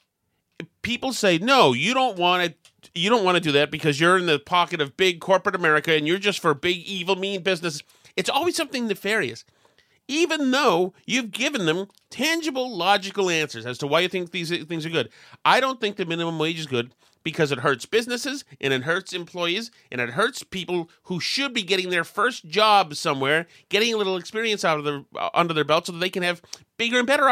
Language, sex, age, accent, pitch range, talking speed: English, male, 30-49, American, 145-205 Hz, 215 wpm